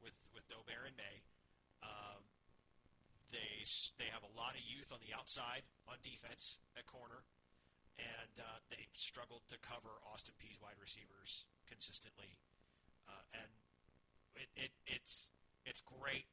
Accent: American